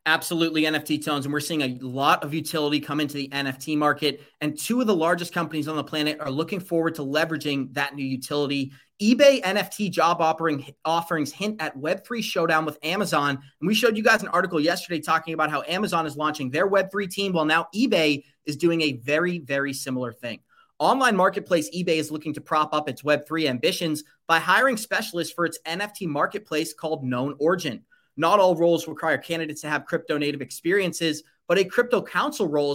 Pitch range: 150-180 Hz